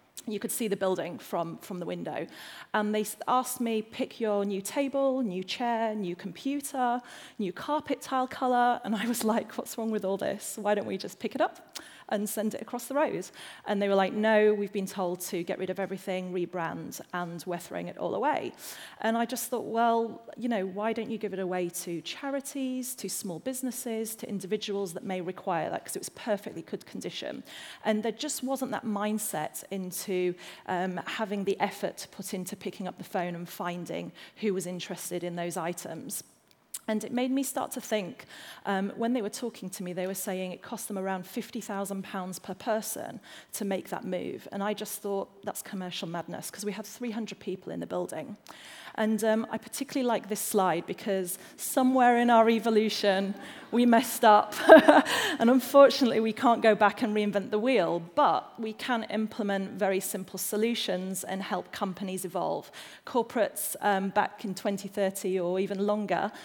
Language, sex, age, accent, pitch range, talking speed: English, female, 30-49, British, 190-235 Hz, 190 wpm